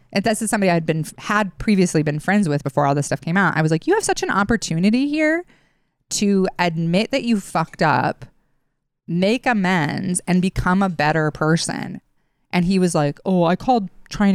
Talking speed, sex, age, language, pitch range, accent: 195 wpm, female, 20-39, English, 155-210 Hz, American